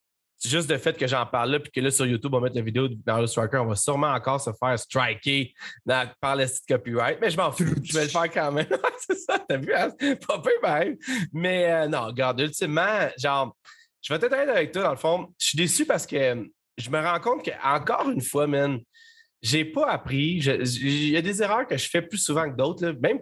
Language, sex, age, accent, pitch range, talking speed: French, male, 30-49, Canadian, 130-185 Hz, 245 wpm